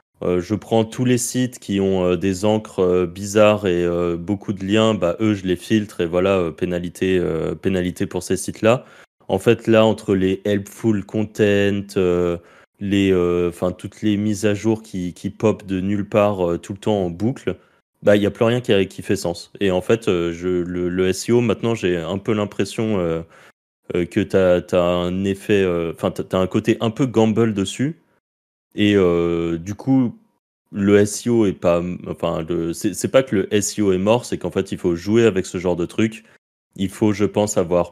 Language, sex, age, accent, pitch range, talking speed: French, male, 20-39, French, 90-105 Hz, 210 wpm